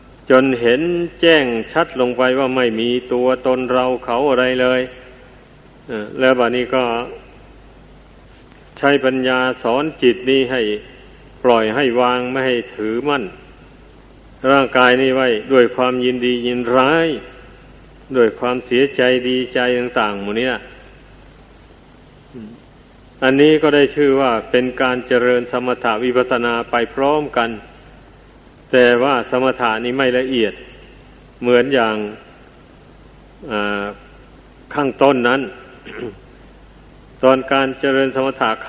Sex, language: male, Thai